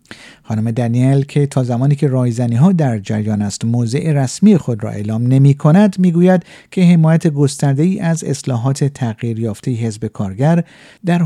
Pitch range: 120-170 Hz